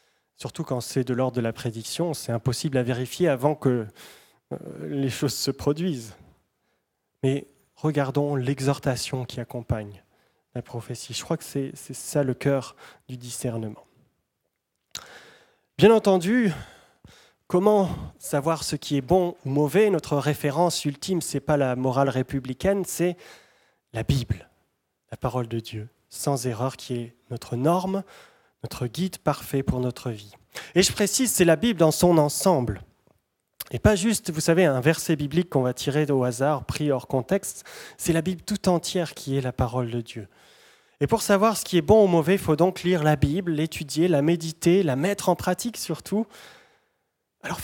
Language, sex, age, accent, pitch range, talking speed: French, male, 20-39, French, 130-175 Hz, 165 wpm